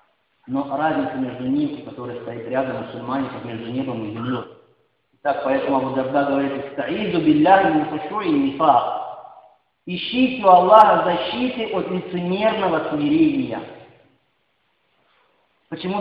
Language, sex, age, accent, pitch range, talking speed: Russian, male, 40-59, native, 140-225 Hz, 110 wpm